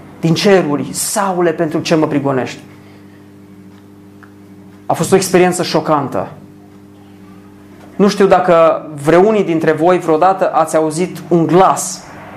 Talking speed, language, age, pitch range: 110 wpm, Romanian, 30-49, 140-185 Hz